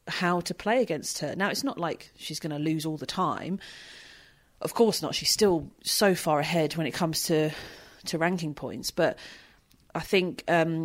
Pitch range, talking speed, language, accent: 160-195 Hz, 195 wpm, English, British